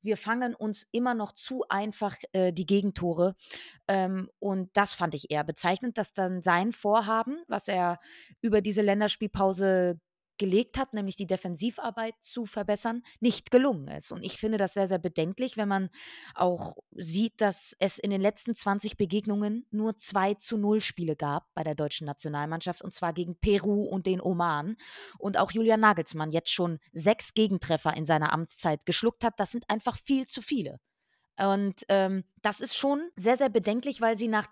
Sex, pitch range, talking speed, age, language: female, 190-255 Hz, 175 wpm, 20-39, German